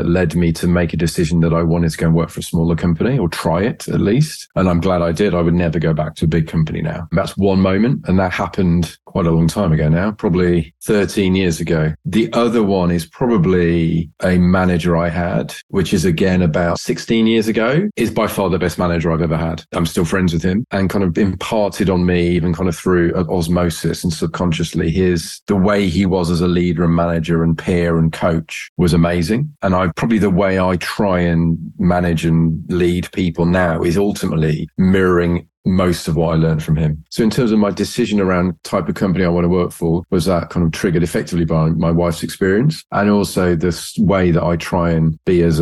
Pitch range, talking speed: 85-90 Hz, 225 wpm